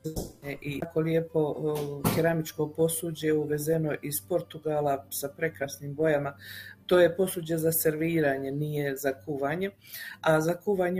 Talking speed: 120 wpm